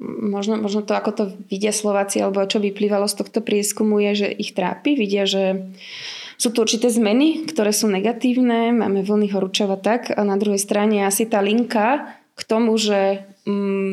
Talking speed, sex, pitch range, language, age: 175 wpm, female, 190-220 Hz, Slovak, 20-39